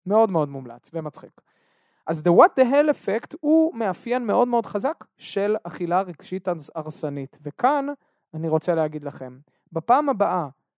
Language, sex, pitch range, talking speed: Hebrew, male, 160-225 Hz, 145 wpm